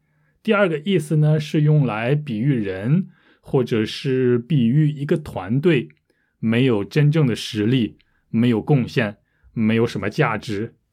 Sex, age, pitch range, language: male, 20-39, 110-150 Hz, Chinese